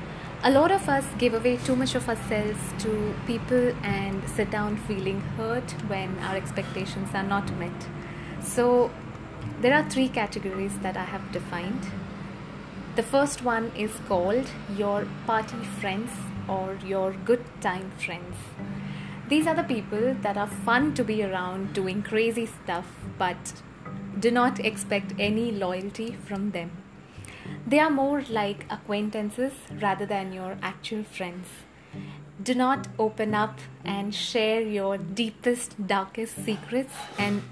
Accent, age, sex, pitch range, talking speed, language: Indian, 20-39, female, 190-235 Hz, 140 wpm, English